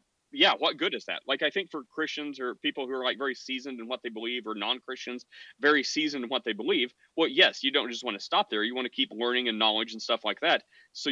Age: 30-49